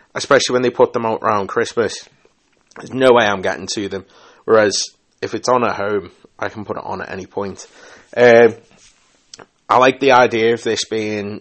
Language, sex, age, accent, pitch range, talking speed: English, male, 20-39, British, 105-135 Hz, 195 wpm